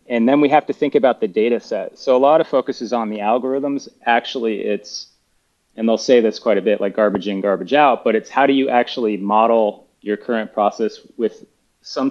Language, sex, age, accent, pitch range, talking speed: English, male, 30-49, American, 110-140 Hz, 225 wpm